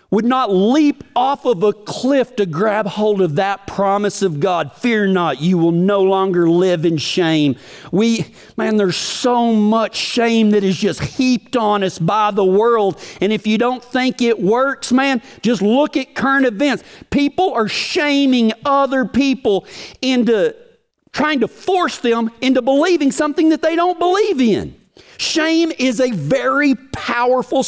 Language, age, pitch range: English, 50-69, 180-260 Hz